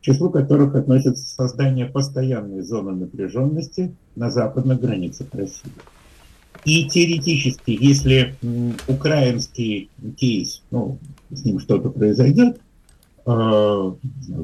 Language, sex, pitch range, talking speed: Russian, male, 120-160 Hz, 95 wpm